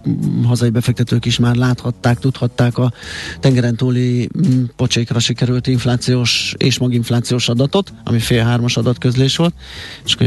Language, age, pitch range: Hungarian, 30-49, 115-130 Hz